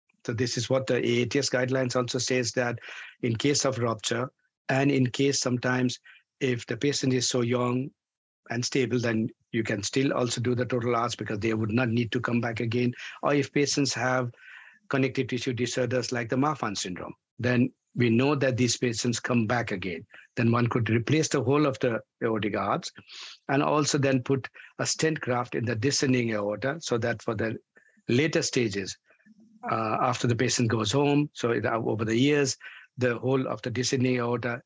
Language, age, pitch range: English, 60-79, 115-135 Hz